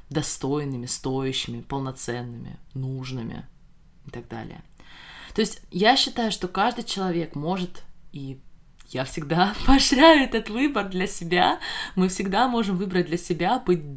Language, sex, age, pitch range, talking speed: Russian, female, 20-39, 170-210 Hz, 130 wpm